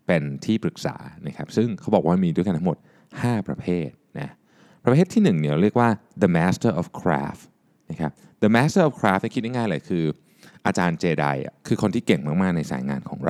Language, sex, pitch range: Thai, male, 75-125 Hz